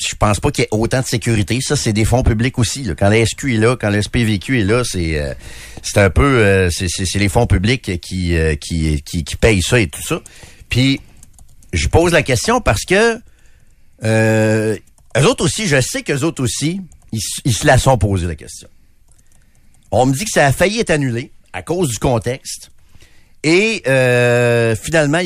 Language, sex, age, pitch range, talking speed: French, male, 50-69, 95-135 Hz, 210 wpm